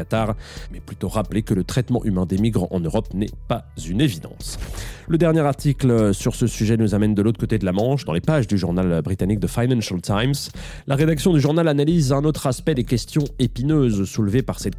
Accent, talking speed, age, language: French, 210 wpm, 30-49, French